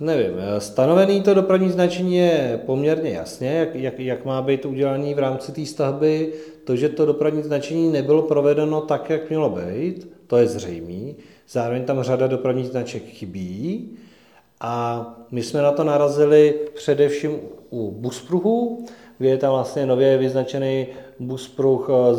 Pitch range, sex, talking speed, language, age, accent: 115-145 Hz, male, 145 wpm, Czech, 40-59, native